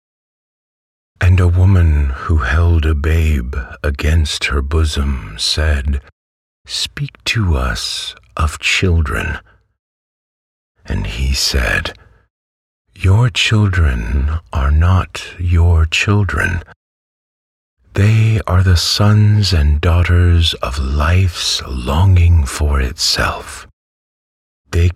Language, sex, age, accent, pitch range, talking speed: English, male, 50-69, American, 75-90 Hz, 90 wpm